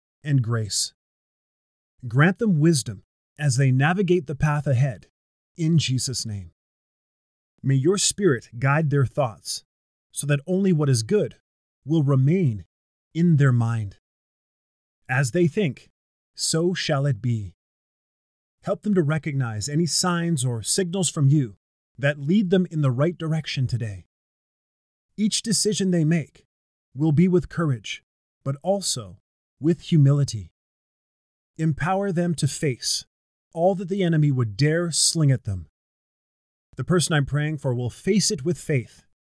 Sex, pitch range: male, 105-170 Hz